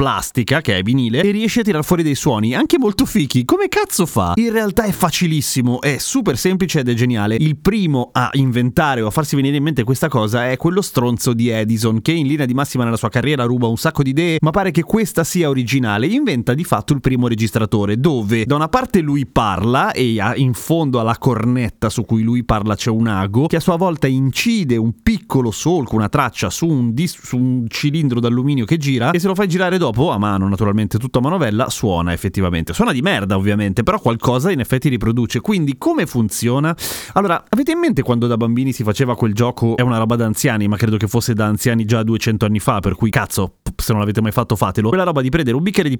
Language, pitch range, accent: Italian, 115-160 Hz, native